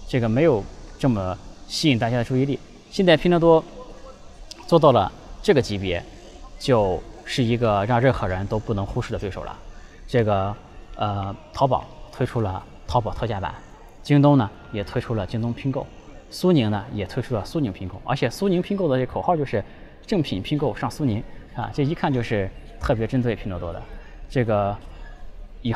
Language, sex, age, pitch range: Chinese, male, 20-39, 95-125 Hz